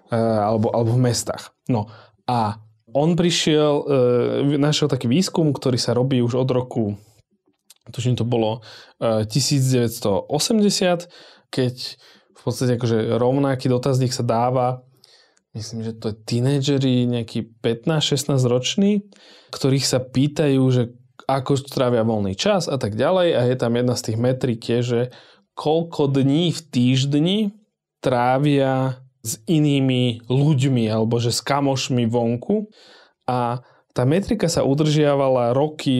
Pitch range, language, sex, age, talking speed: 120-140 Hz, Slovak, male, 20-39, 125 wpm